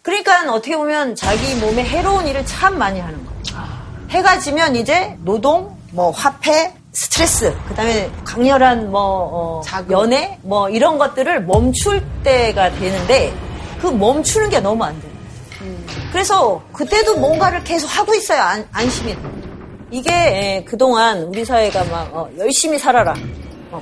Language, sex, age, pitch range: Korean, female, 40-59, 205-340 Hz